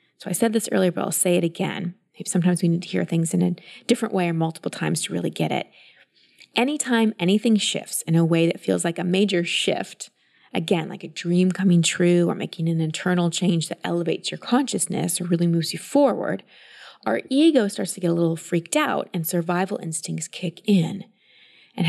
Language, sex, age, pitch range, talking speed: English, female, 20-39, 175-235 Hz, 205 wpm